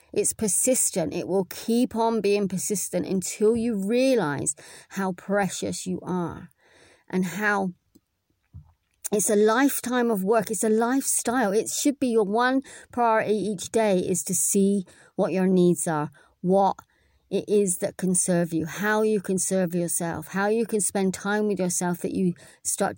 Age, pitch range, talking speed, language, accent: 30-49, 175-205 Hz, 160 wpm, English, British